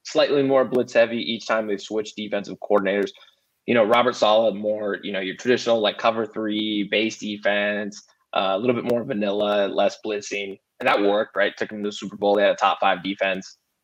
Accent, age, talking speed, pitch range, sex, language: American, 20-39, 210 wpm, 100-110 Hz, male, English